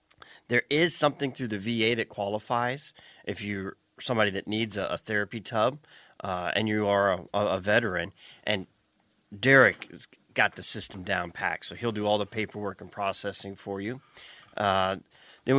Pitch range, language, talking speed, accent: 105-125 Hz, English, 170 wpm, American